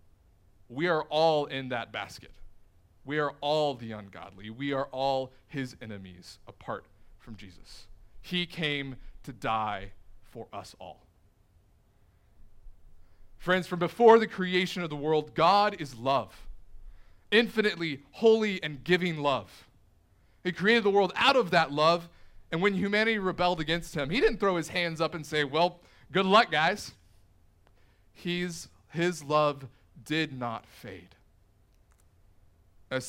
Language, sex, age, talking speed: English, male, 30-49, 135 wpm